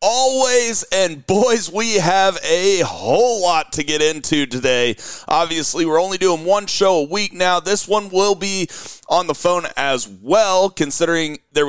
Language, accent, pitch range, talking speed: English, American, 145-210 Hz, 165 wpm